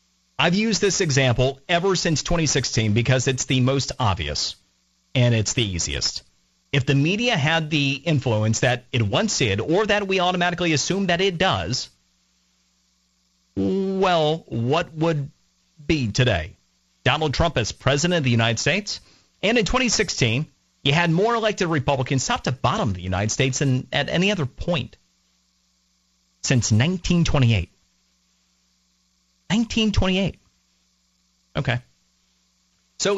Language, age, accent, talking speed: English, 40-59, American, 130 wpm